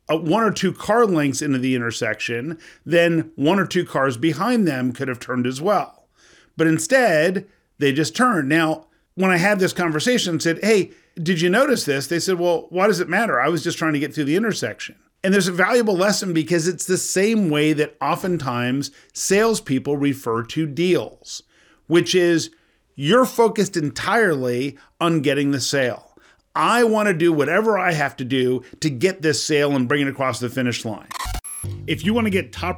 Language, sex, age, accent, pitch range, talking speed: English, male, 50-69, American, 135-190 Hz, 190 wpm